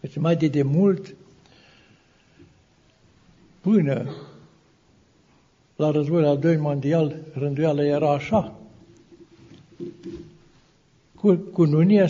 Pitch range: 140-170 Hz